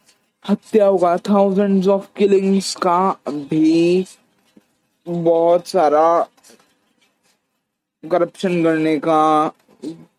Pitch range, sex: 160-195 Hz, male